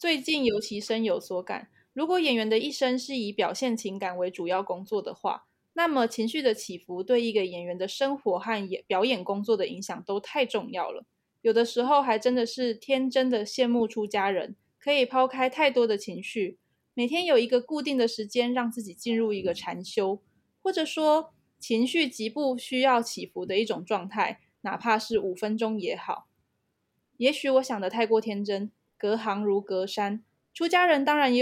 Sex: female